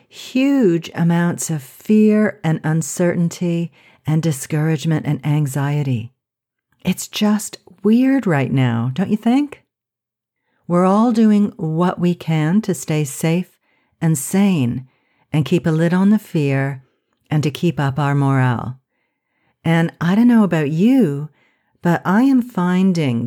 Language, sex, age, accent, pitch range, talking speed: English, female, 50-69, American, 140-185 Hz, 135 wpm